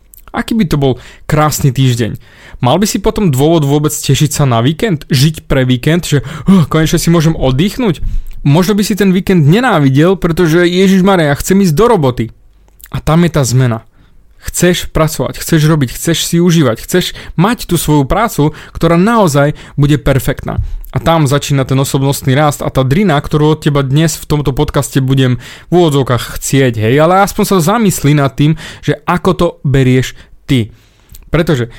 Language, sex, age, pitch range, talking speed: Slovak, male, 20-39, 135-170 Hz, 175 wpm